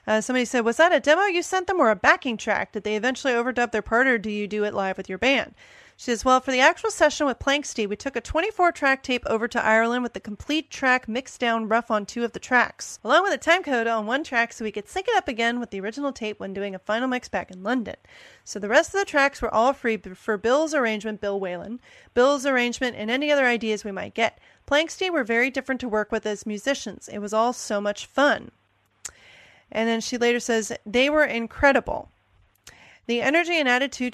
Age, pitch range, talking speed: 30-49, 220-270 Hz, 240 wpm